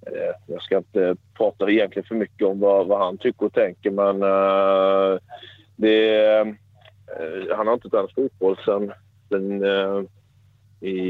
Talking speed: 140 wpm